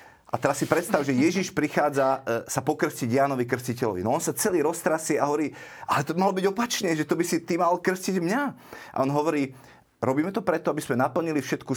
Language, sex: Slovak, male